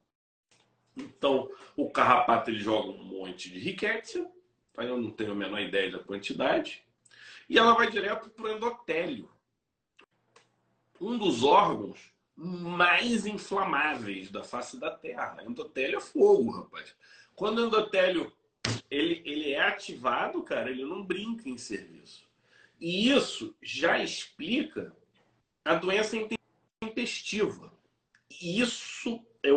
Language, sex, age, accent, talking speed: Portuguese, male, 40-59, Brazilian, 120 wpm